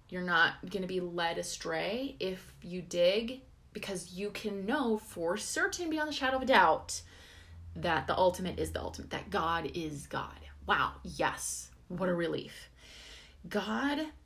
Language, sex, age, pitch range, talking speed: English, female, 20-39, 155-240 Hz, 160 wpm